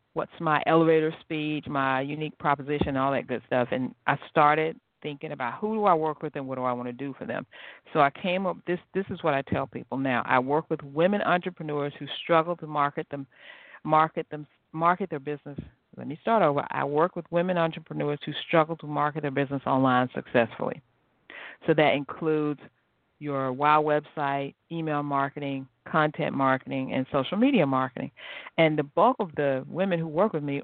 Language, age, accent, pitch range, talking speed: English, 50-69, American, 145-175 Hz, 195 wpm